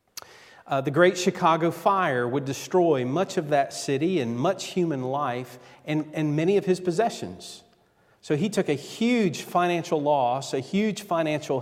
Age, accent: 40-59, American